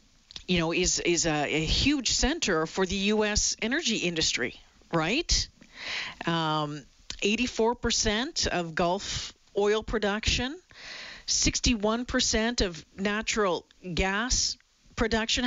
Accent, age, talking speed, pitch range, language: American, 40-59, 95 wpm, 180-230 Hz, English